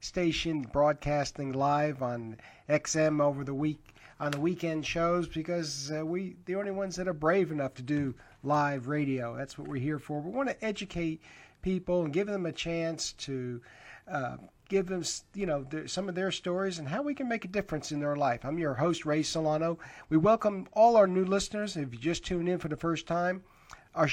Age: 50-69